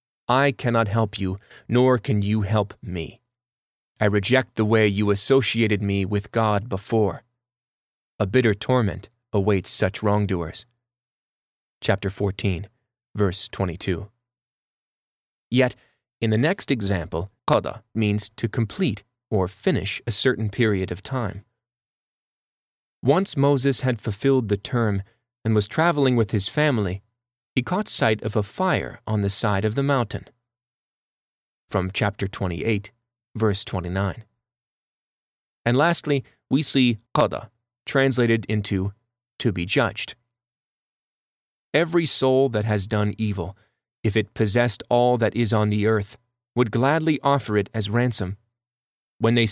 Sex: male